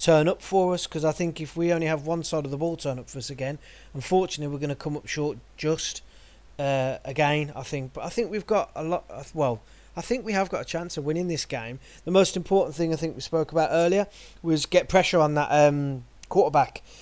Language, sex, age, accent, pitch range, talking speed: English, male, 30-49, British, 140-165 Hz, 245 wpm